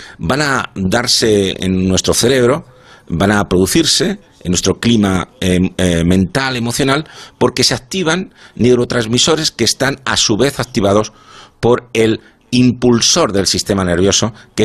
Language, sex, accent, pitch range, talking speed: Spanish, male, Spanish, 100-130 Hz, 135 wpm